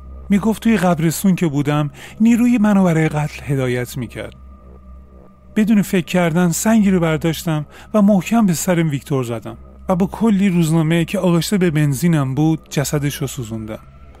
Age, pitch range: 30-49, 115-185 Hz